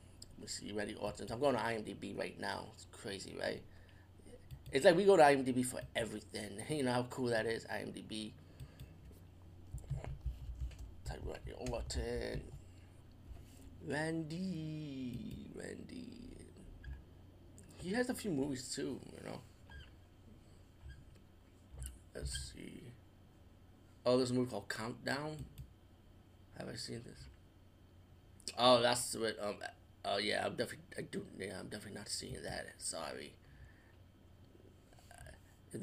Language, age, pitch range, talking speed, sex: English, 20-39, 90-130 Hz, 125 wpm, male